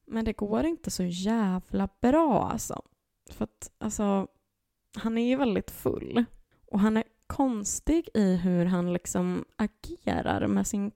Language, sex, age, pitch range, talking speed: Swedish, female, 20-39, 165-240 Hz, 150 wpm